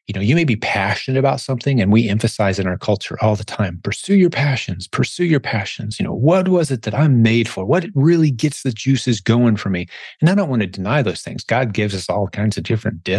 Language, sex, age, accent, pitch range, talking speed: English, male, 30-49, American, 100-135 Hz, 250 wpm